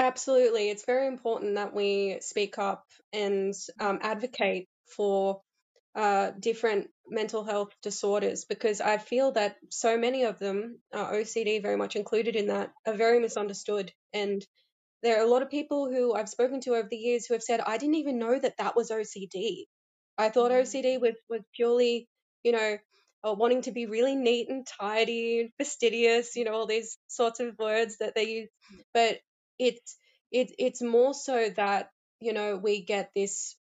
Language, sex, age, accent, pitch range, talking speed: English, female, 10-29, Australian, 205-245 Hz, 180 wpm